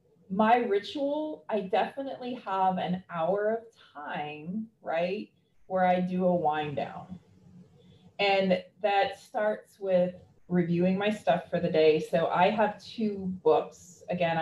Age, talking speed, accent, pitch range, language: 30-49, 135 wpm, American, 170-215 Hz, English